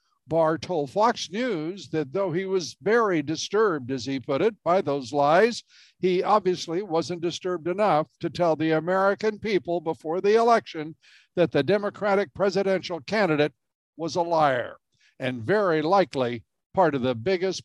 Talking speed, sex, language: 155 wpm, male, English